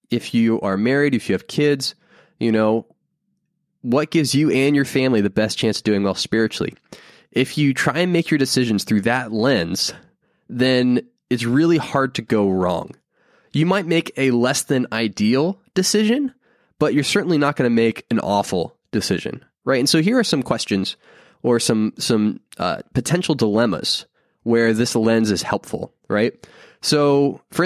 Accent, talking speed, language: American, 170 wpm, English